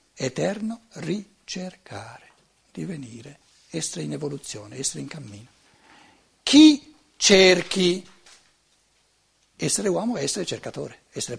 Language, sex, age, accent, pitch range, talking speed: Italian, male, 60-79, native, 135-210 Hz, 90 wpm